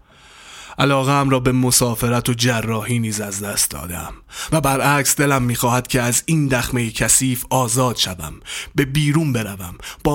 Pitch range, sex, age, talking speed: 100-135 Hz, male, 30-49, 155 wpm